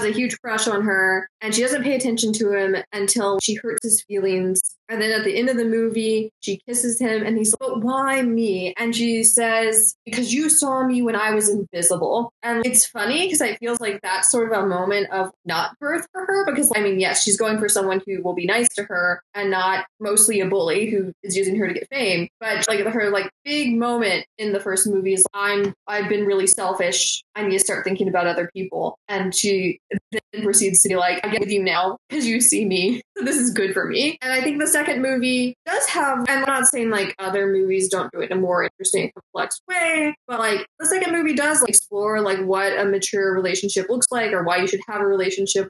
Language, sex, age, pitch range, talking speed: English, female, 20-39, 195-240 Hz, 230 wpm